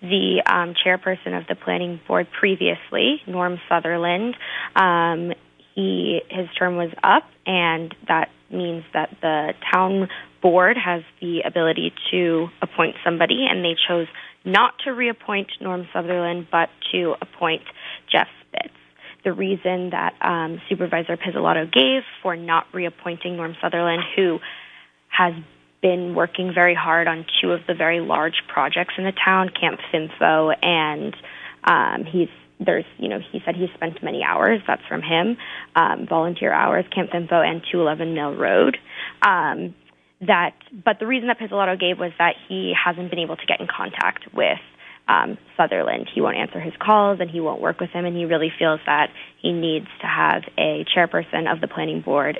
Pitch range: 165-185 Hz